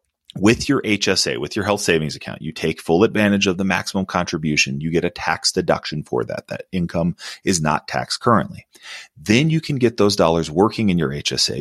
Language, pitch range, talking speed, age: English, 85-120 Hz, 200 wpm, 30-49